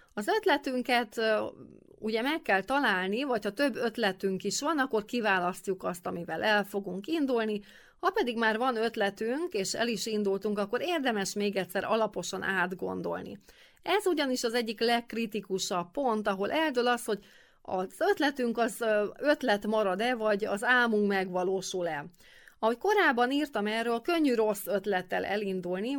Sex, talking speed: female, 135 wpm